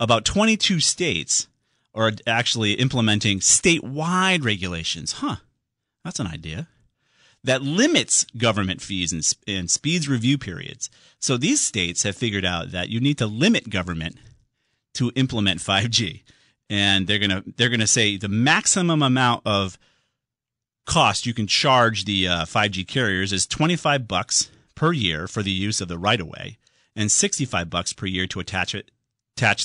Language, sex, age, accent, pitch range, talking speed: English, male, 40-59, American, 95-150 Hz, 150 wpm